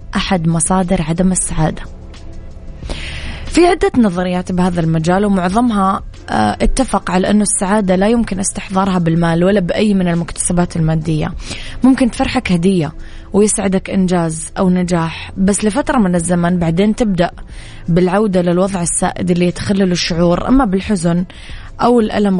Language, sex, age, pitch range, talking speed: Arabic, female, 20-39, 175-200 Hz, 125 wpm